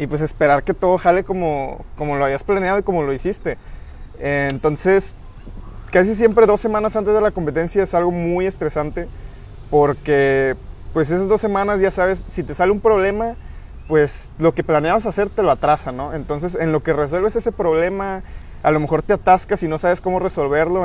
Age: 20-39